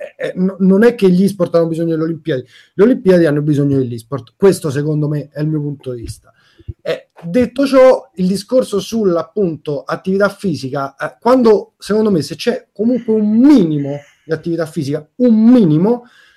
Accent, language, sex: native, Italian, male